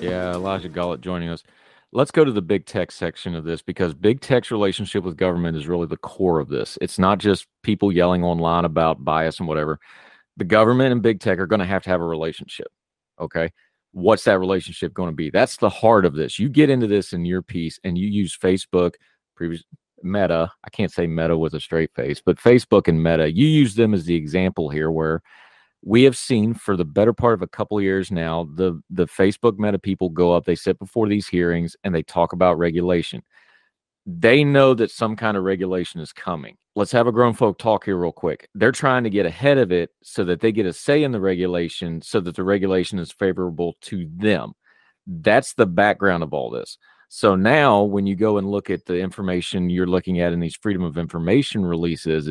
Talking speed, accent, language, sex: 220 wpm, American, English, male